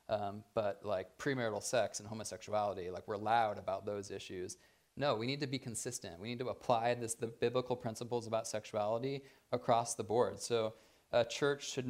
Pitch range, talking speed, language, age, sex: 105-130 Hz, 175 wpm, English, 20-39, male